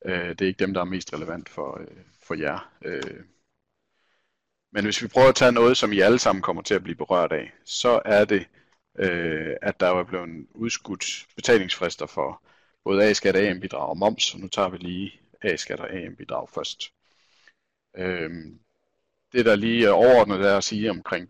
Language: Danish